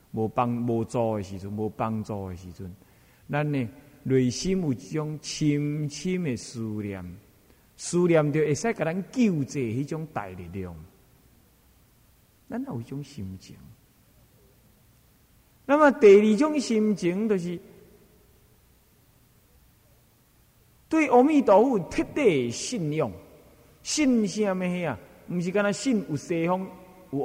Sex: male